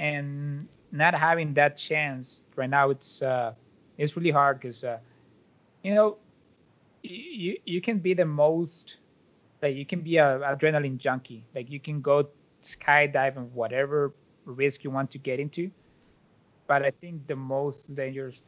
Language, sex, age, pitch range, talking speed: English, male, 20-39, 130-150 Hz, 155 wpm